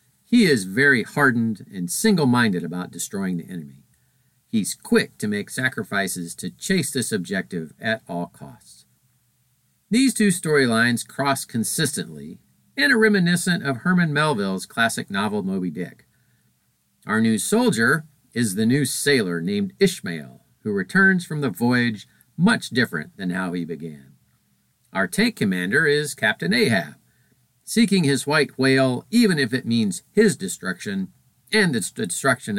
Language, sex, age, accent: English, male, 50-69, American